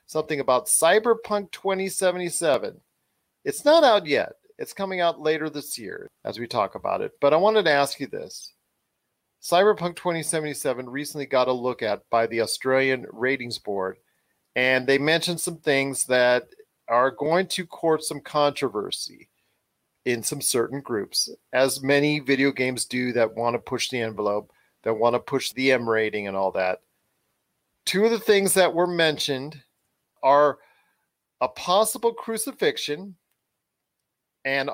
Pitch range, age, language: 120-160 Hz, 40-59, English